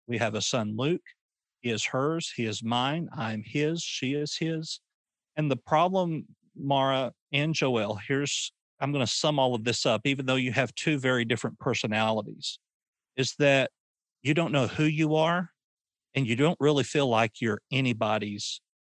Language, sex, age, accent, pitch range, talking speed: English, male, 40-59, American, 120-155 Hz, 175 wpm